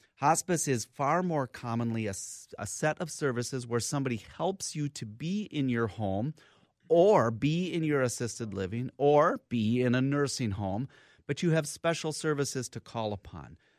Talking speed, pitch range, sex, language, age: 170 wpm, 105-145 Hz, male, English, 30-49